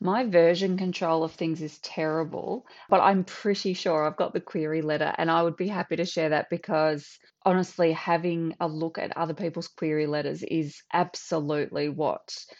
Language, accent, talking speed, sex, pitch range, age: English, Australian, 175 wpm, female, 155-180 Hz, 20-39